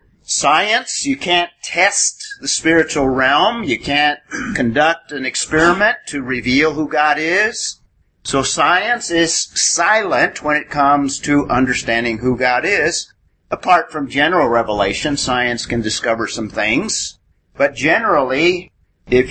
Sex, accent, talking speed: male, American, 125 wpm